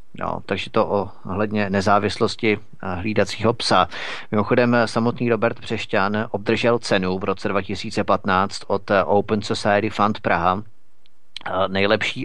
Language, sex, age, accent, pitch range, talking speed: Czech, male, 30-49, native, 100-115 Hz, 110 wpm